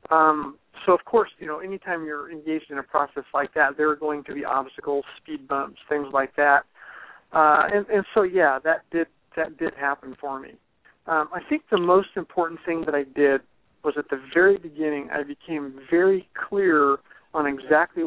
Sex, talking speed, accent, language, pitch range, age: male, 195 wpm, American, English, 140-165 Hz, 50-69